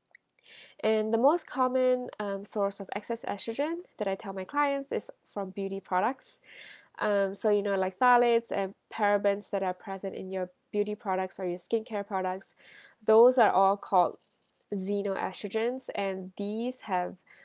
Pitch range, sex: 190-235 Hz, female